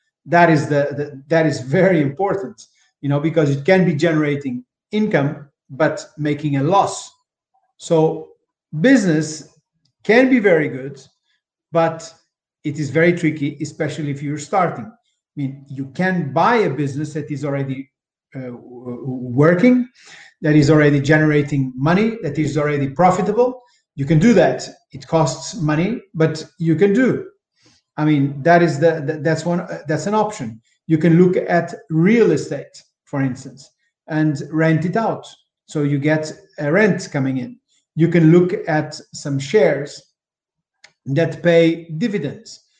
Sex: male